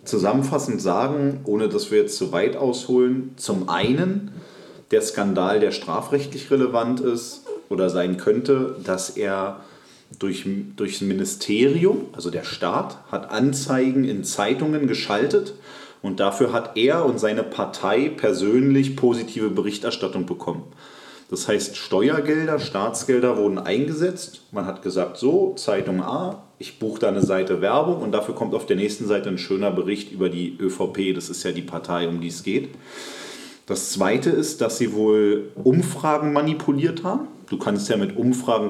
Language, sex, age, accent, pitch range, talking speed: German, male, 30-49, German, 95-150 Hz, 155 wpm